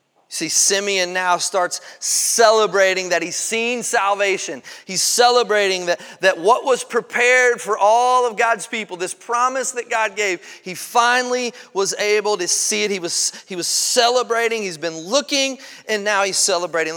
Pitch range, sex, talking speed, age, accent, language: 170-235 Hz, male, 155 wpm, 30-49, American, English